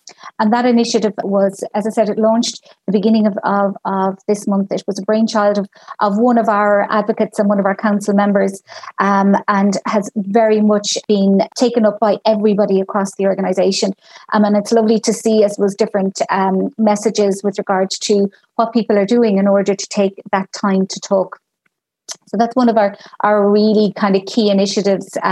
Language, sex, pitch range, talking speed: English, female, 200-225 Hz, 195 wpm